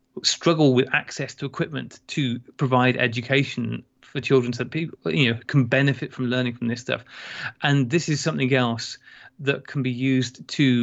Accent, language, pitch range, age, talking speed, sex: British, English, 120-140 Hz, 30-49, 170 wpm, male